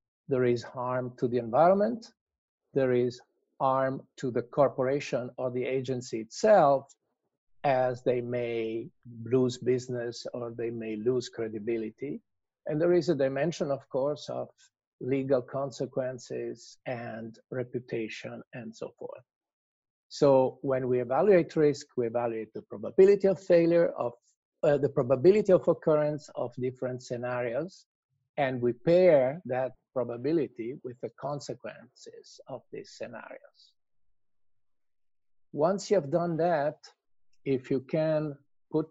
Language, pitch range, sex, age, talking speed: English, 120-150 Hz, male, 50-69, 125 wpm